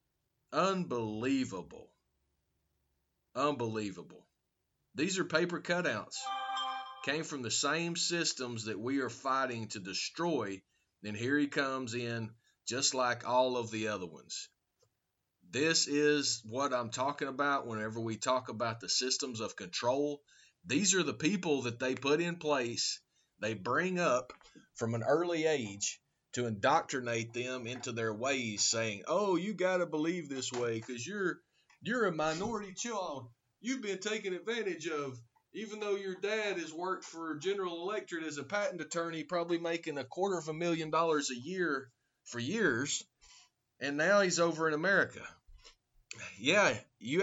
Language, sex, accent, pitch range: English, male, American, 120-170 Hz